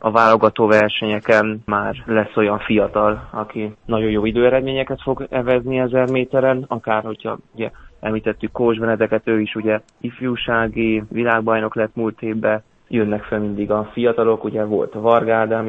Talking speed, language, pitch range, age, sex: 145 wpm, Hungarian, 105-115 Hz, 20-39, male